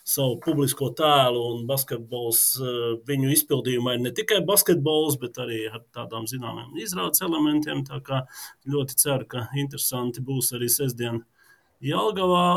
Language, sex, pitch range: English, male, 125-165 Hz